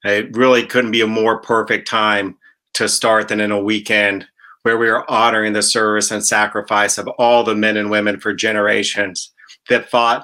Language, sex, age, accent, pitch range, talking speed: English, male, 40-59, American, 105-125 Hz, 190 wpm